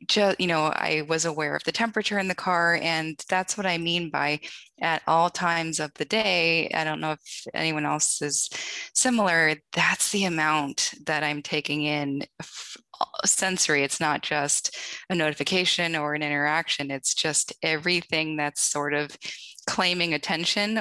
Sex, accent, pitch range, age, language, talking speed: female, American, 150-180 Hz, 20-39, English, 165 wpm